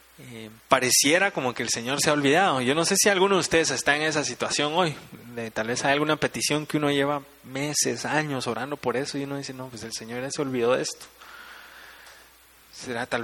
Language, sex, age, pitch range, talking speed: Spanish, male, 20-39, 115-150 Hz, 210 wpm